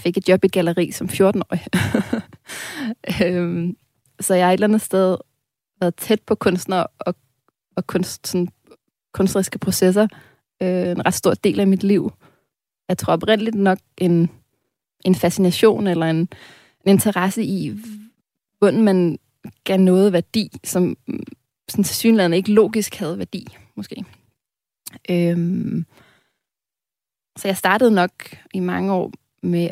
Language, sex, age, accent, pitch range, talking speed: Danish, female, 20-39, native, 170-200 Hz, 135 wpm